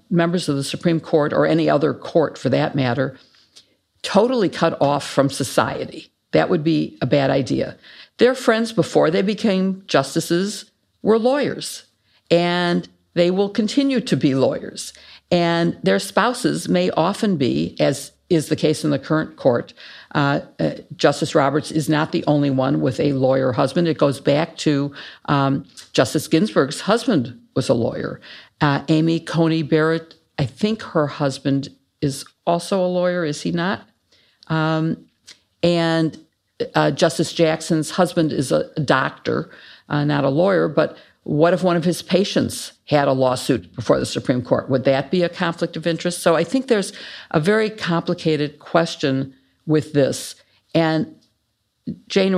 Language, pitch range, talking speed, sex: English, 140-175 Hz, 155 wpm, female